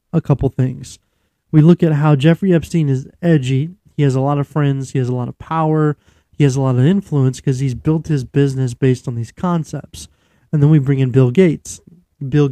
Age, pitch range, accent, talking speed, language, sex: 20-39, 130-160 Hz, American, 220 wpm, English, male